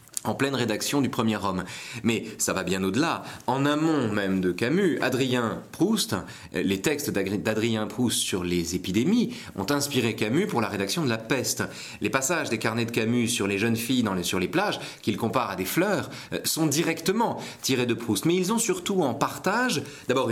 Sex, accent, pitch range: male, French, 100-145 Hz